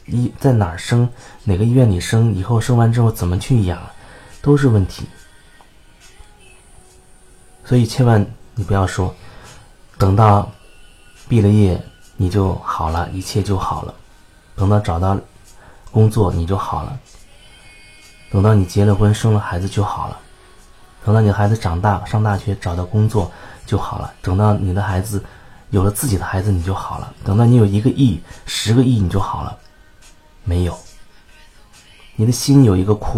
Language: Chinese